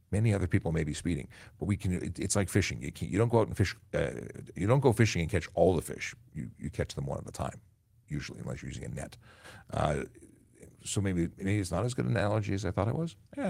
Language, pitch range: English, 85-115 Hz